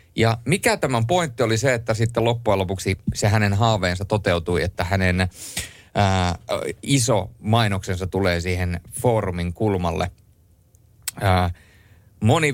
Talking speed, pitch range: 120 wpm, 95-120 Hz